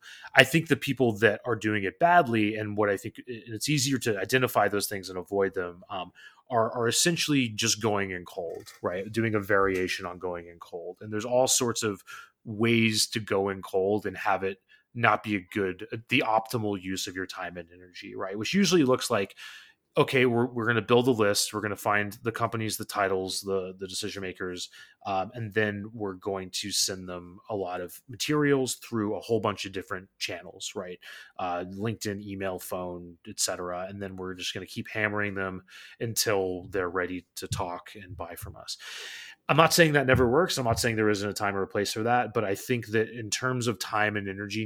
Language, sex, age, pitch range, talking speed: English, male, 30-49, 95-120 Hz, 215 wpm